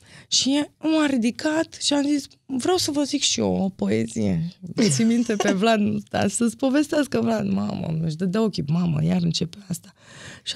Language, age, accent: Romanian, 20-39, native